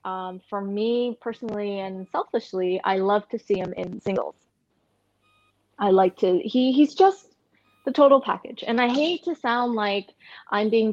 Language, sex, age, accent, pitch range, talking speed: English, female, 20-39, American, 195-235 Hz, 165 wpm